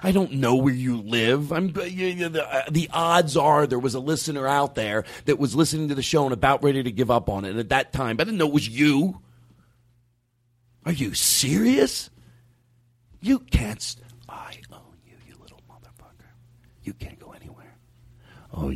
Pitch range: 110-140 Hz